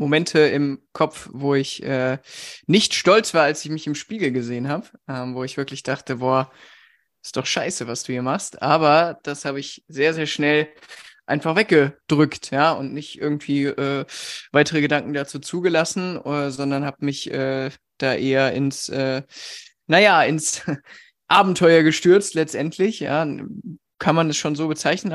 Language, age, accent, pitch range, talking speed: German, 20-39, German, 140-165 Hz, 160 wpm